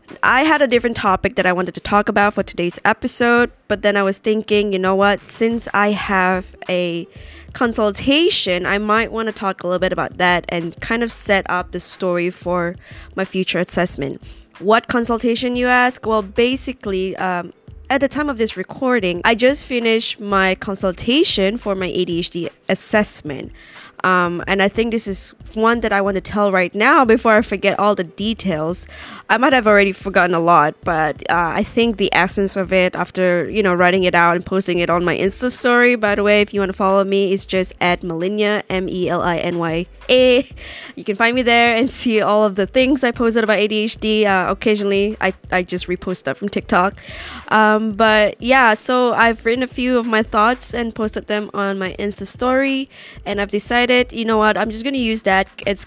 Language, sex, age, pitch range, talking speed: English, female, 20-39, 185-230 Hz, 200 wpm